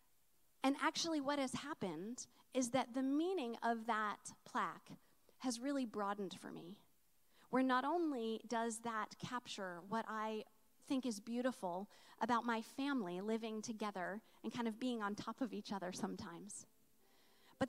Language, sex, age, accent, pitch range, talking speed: English, female, 40-59, American, 215-270 Hz, 150 wpm